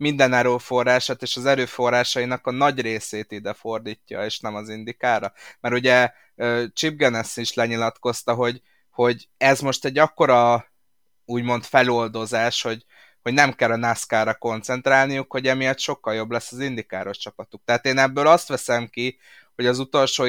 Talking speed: 155 wpm